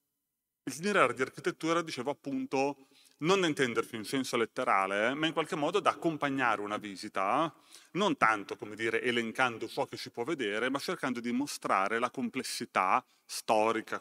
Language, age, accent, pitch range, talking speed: Italian, 30-49, native, 110-140 Hz, 160 wpm